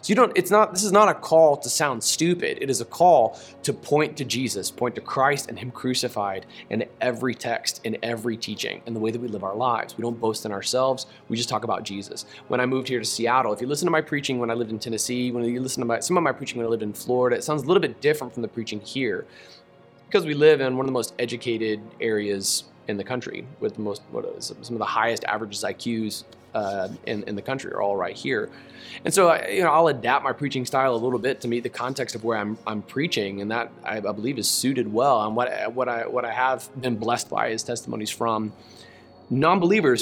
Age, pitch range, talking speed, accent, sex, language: 20-39, 115-135 Hz, 250 wpm, American, male, English